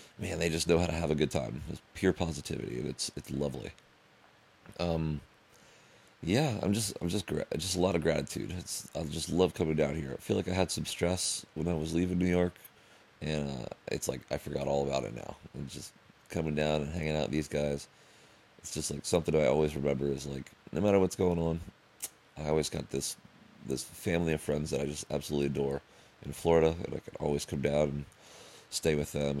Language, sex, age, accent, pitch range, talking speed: English, male, 30-49, American, 70-85 Hz, 220 wpm